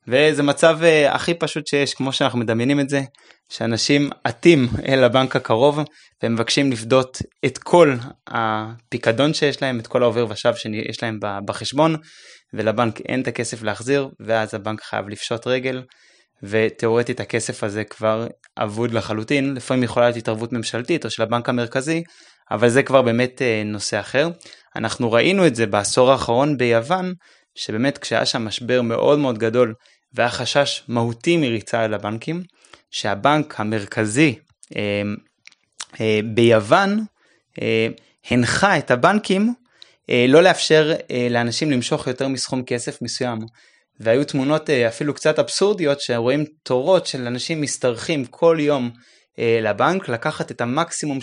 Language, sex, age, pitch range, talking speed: Hebrew, male, 20-39, 115-145 Hz, 130 wpm